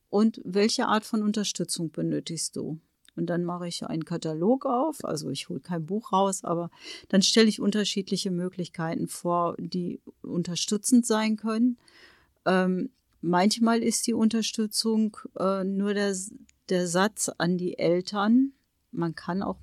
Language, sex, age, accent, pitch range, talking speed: German, female, 40-59, German, 175-215 Hz, 145 wpm